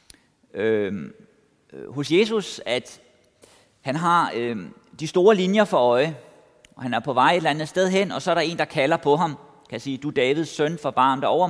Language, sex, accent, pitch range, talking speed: Danish, male, native, 130-175 Hz, 210 wpm